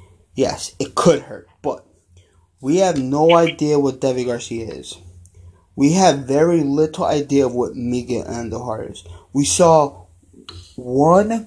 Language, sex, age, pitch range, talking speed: English, male, 20-39, 90-150 Hz, 135 wpm